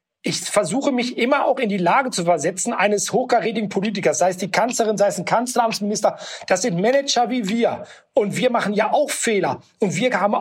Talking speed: 200 wpm